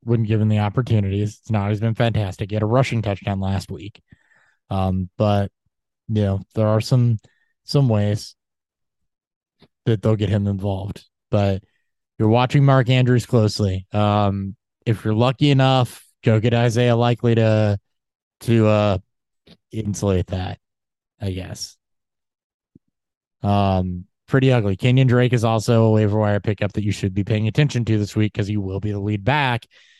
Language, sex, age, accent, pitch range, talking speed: English, male, 20-39, American, 100-120 Hz, 160 wpm